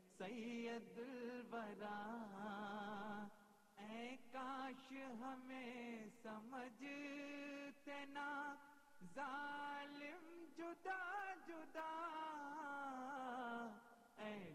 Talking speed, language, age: 45 wpm, Urdu, 30-49